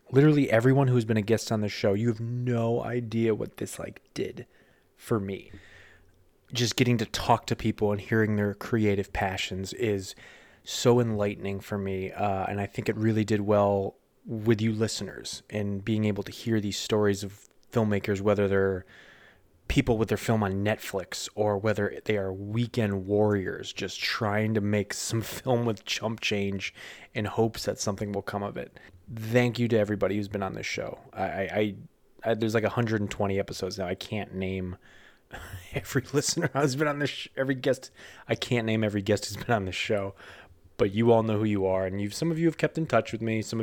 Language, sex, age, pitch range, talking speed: English, male, 20-39, 100-120 Hz, 200 wpm